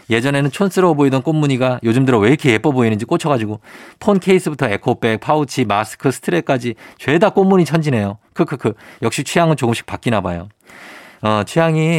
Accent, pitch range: native, 105-155 Hz